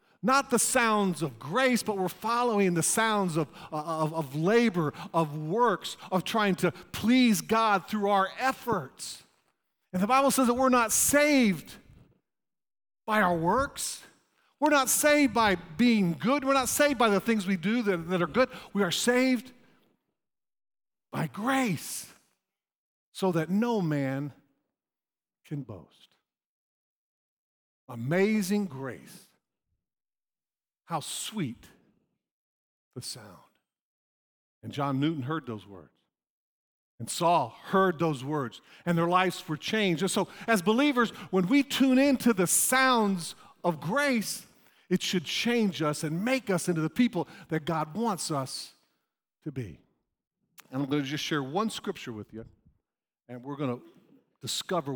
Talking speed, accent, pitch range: 140 wpm, American, 145-225 Hz